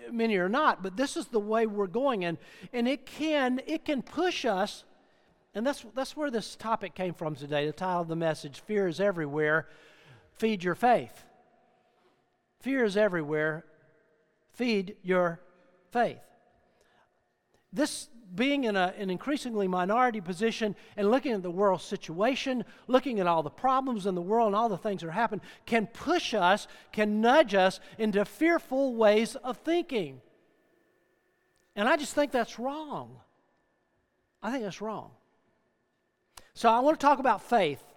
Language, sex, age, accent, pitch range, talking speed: English, male, 50-69, American, 185-240 Hz, 160 wpm